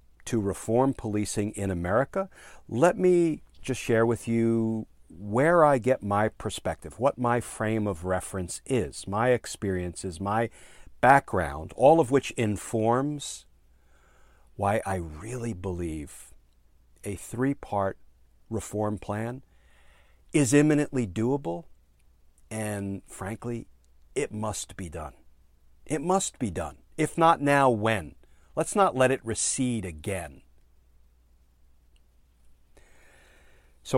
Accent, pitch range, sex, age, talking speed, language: American, 85-115 Hz, male, 50-69, 110 wpm, English